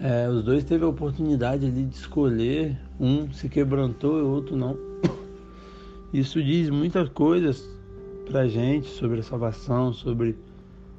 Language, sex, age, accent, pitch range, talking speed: Portuguese, male, 60-79, Brazilian, 120-160 Hz, 140 wpm